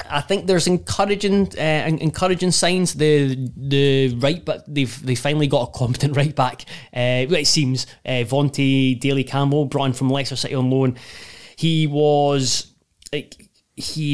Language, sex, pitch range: English, male, 125-145 Hz